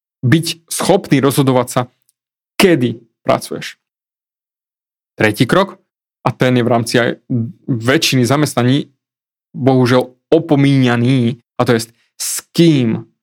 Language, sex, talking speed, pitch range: Slovak, male, 105 wpm, 130-180 Hz